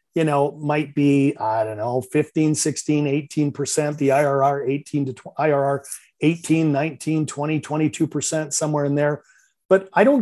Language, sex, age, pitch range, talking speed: English, male, 40-59, 140-165 Hz, 145 wpm